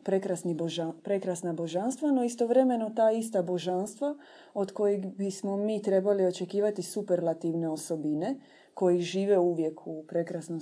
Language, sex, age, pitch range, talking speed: Croatian, female, 30-49, 175-215 Hz, 120 wpm